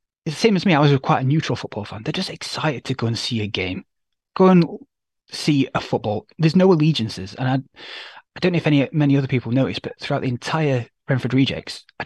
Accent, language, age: British, English, 20-39